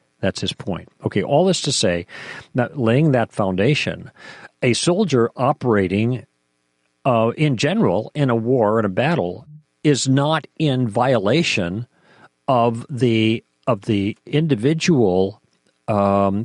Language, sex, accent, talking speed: English, male, American, 125 wpm